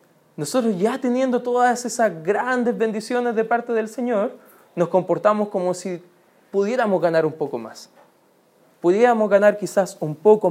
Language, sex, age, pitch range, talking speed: Spanish, male, 20-39, 170-220 Hz, 145 wpm